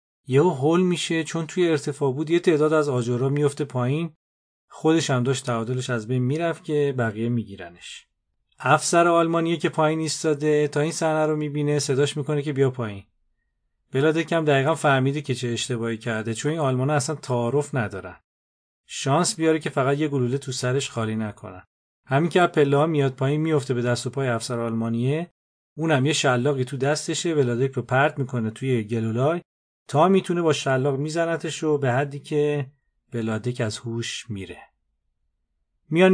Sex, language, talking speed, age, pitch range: male, Persian, 165 wpm, 40-59, 120-155 Hz